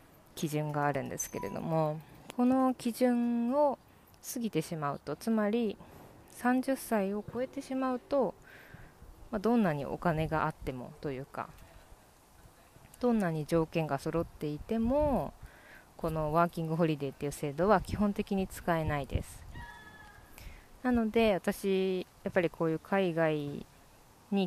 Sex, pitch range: female, 150-210 Hz